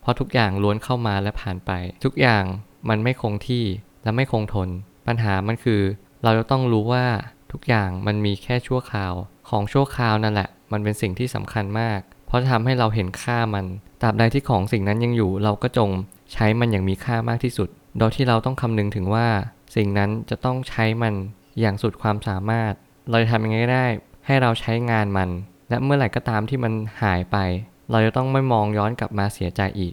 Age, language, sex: 20-39, Thai, male